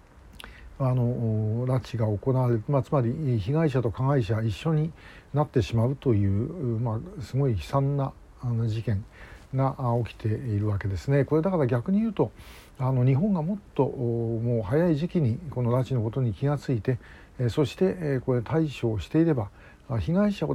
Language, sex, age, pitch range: Japanese, male, 60-79, 115-150 Hz